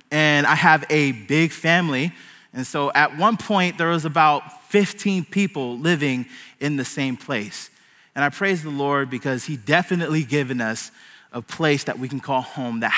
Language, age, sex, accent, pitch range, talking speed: English, 20-39, male, American, 140-185 Hz, 180 wpm